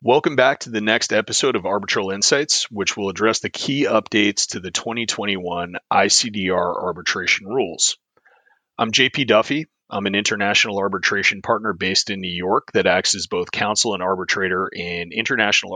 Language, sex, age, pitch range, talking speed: English, male, 30-49, 95-115 Hz, 160 wpm